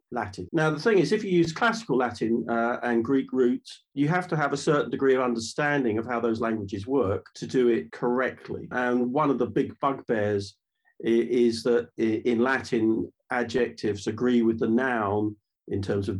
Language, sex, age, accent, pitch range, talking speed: English, male, 50-69, British, 110-130 Hz, 185 wpm